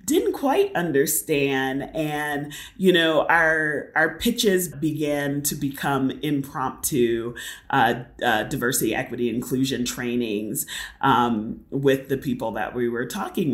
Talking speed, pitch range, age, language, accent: 120 wpm, 130-160 Hz, 30-49, English, American